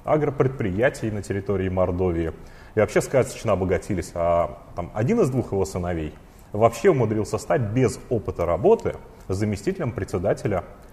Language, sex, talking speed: Russian, male, 120 wpm